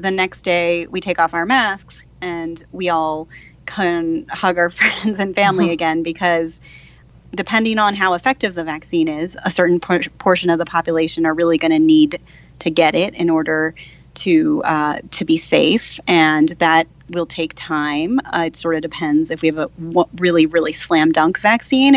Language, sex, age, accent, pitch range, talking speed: English, female, 30-49, American, 165-205 Hz, 185 wpm